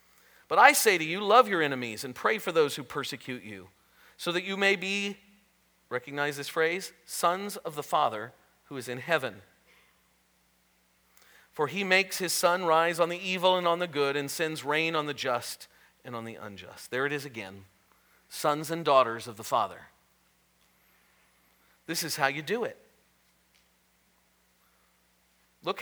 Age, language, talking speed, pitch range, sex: 40-59, English, 165 wpm, 110-180 Hz, male